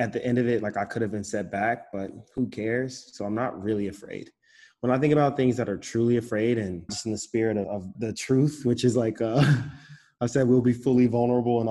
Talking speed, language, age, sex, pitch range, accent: 245 wpm, English, 20-39, male, 105-120 Hz, American